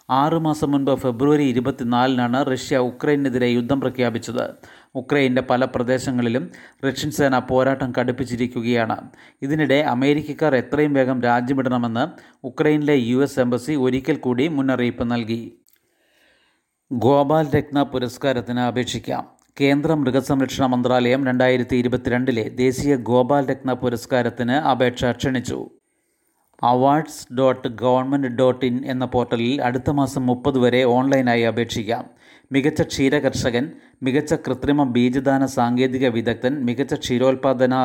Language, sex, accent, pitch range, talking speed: Malayalam, male, native, 125-140 Hz, 105 wpm